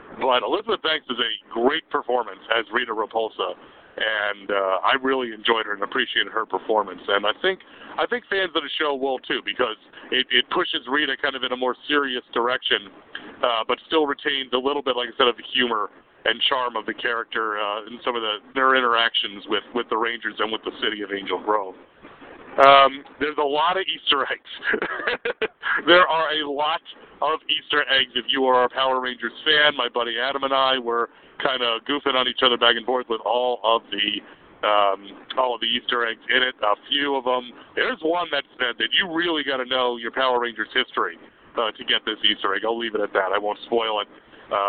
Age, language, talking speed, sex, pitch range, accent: 50-69, English, 210 wpm, male, 115-155 Hz, American